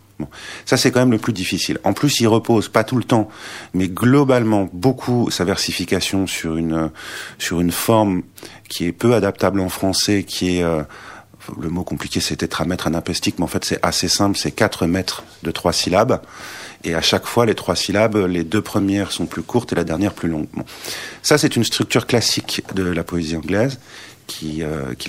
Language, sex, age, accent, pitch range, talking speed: French, male, 40-59, French, 85-110 Hz, 200 wpm